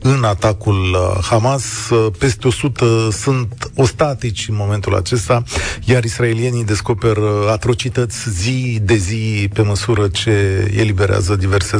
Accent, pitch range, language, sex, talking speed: native, 105-125 Hz, Romanian, male, 110 wpm